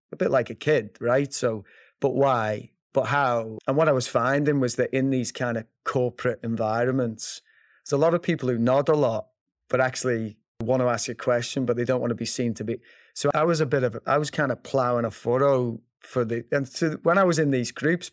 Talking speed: 235 wpm